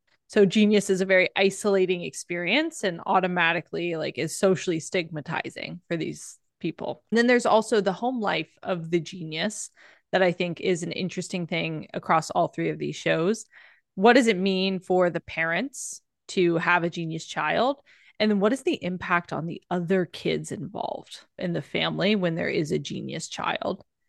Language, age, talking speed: English, 20-39, 175 wpm